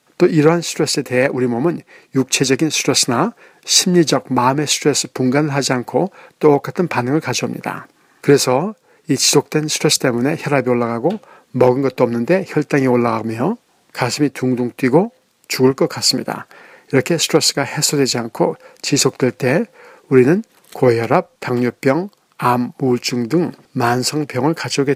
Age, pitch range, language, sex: 60-79, 125-155 Hz, Korean, male